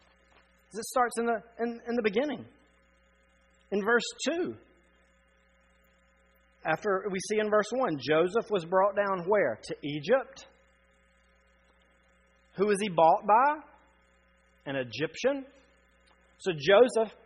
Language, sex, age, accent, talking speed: English, male, 40-59, American, 110 wpm